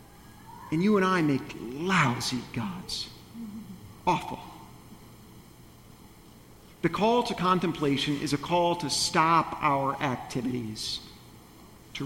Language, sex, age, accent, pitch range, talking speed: English, male, 50-69, American, 125-170 Hz, 100 wpm